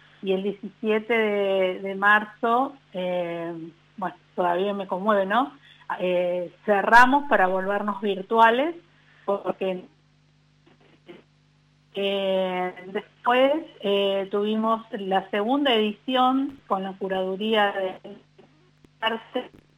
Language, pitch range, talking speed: Spanish, 185-220 Hz, 90 wpm